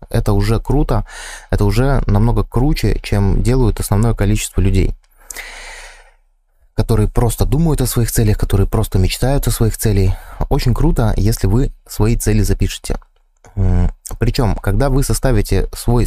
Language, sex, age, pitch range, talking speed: Russian, male, 20-39, 95-120 Hz, 135 wpm